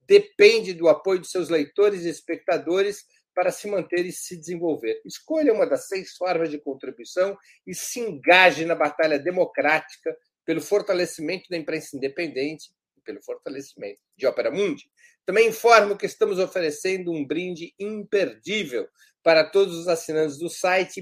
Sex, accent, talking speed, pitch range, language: male, Brazilian, 150 wpm, 155-215 Hz, Portuguese